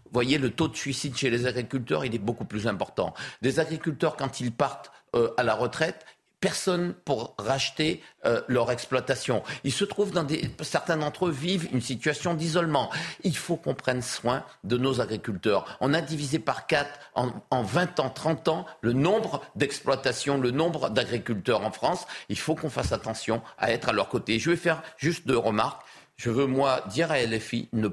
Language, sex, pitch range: French, male, 125-170 Hz